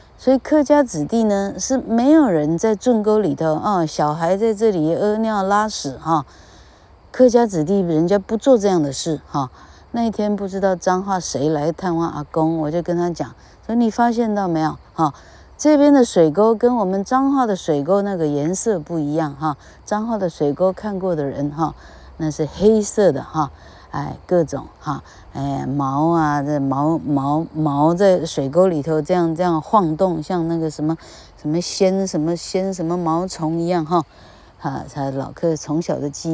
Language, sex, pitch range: Chinese, female, 150-205 Hz